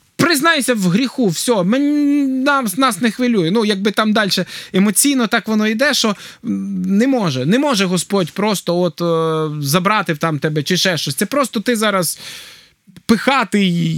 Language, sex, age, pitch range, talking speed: Ukrainian, male, 20-39, 140-200 Hz, 155 wpm